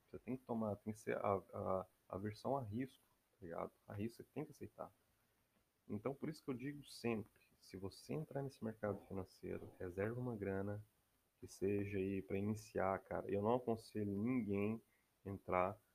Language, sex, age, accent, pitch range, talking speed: Portuguese, male, 20-39, Brazilian, 95-110 Hz, 180 wpm